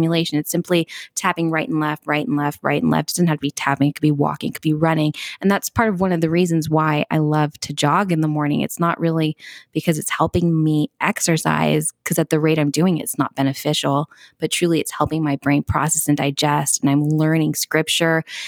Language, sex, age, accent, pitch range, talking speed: English, female, 20-39, American, 145-175 Hz, 235 wpm